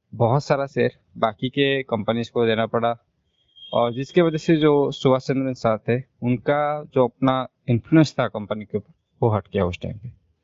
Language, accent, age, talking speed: Hindi, native, 20-39, 185 wpm